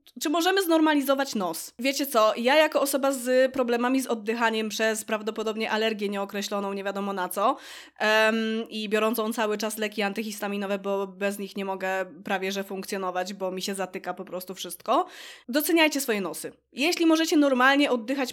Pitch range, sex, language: 205-260 Hz, female, Polish